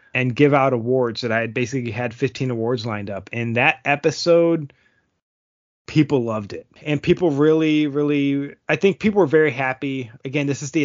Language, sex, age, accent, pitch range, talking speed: English, male, 20-39, American, 115-150 Hz, 185 wpm